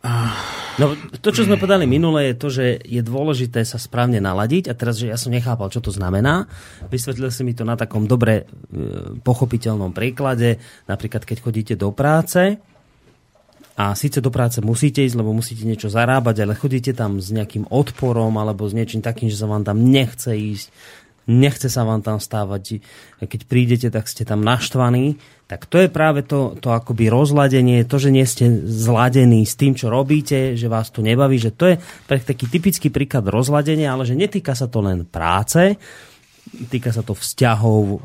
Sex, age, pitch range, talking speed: male, 30-49, 110-130 Hz, 180 wpm